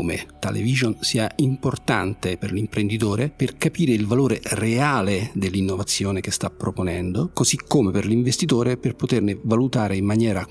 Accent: native